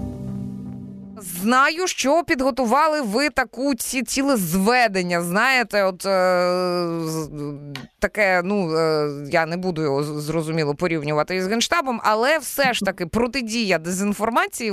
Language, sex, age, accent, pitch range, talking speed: Ukrainian, female, 20-39, native, 185-235 Hz, 115 wpm